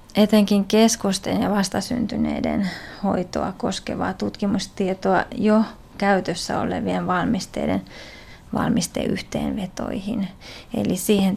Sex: female